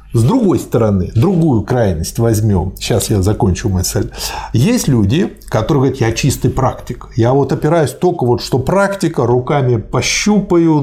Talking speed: 145 wpm